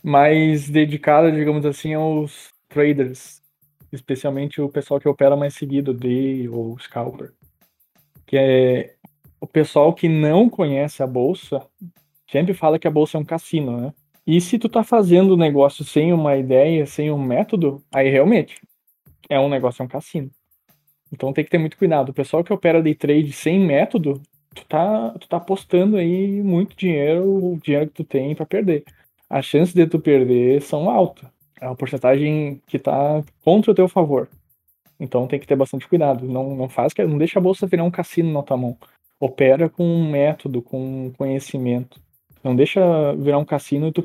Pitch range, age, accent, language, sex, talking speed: 135-160 Hz, 20-39, Brazilian, Portuguese, male, 185 wpm